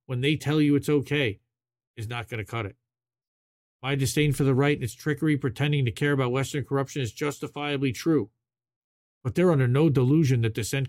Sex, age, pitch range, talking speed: male, 40-59, 120-145 Hz, 200 wpm